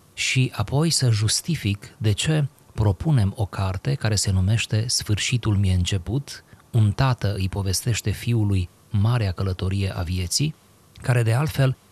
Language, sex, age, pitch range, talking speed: Romanian, male, 30-49, 95-125 Hz, 135 wpm